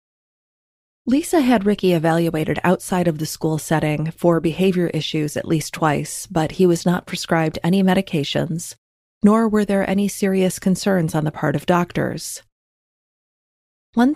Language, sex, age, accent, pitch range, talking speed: English, female, 30-49, American, 160-195 Hz, 145 wpm